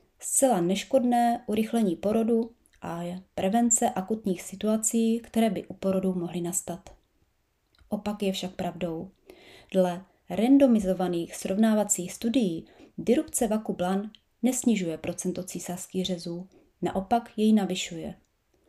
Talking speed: 105 wpm